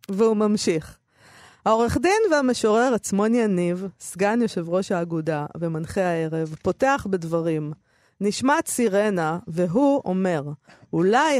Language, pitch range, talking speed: Hebrew, 180-240 Hz, 105 wpm